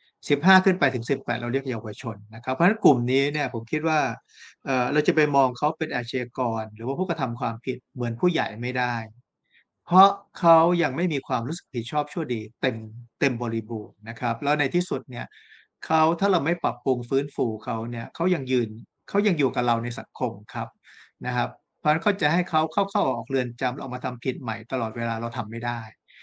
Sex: male